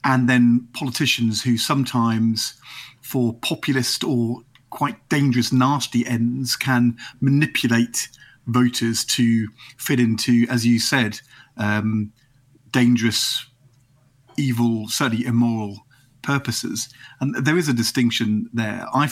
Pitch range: 120-135 Hz